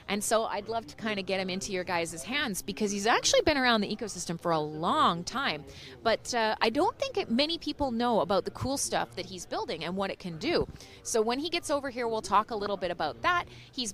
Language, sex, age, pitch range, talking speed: English, female, 30-49, 170-235 Hz, 250 wpm